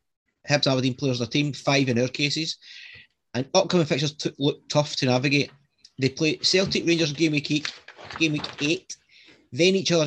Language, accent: English, British